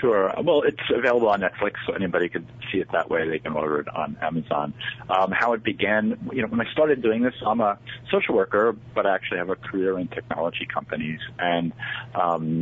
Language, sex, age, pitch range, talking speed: English, male, 40-59, 85-110 Hz, 215 wpm